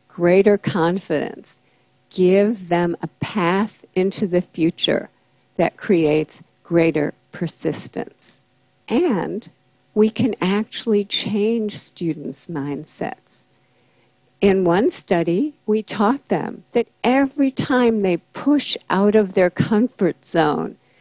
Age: 60-79